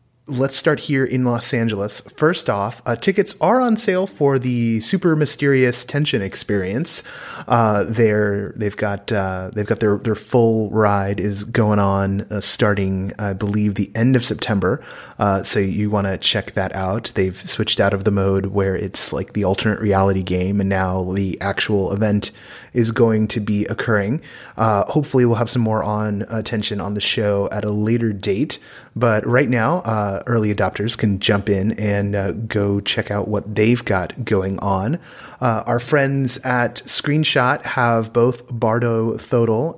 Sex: male